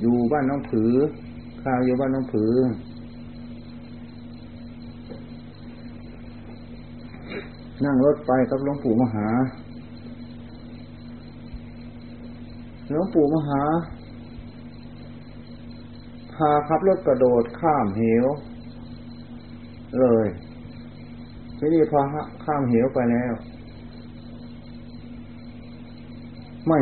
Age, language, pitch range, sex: 30-49, Thai, 110-125 Hz, male